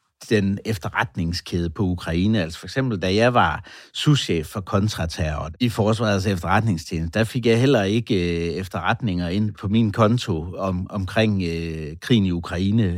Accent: native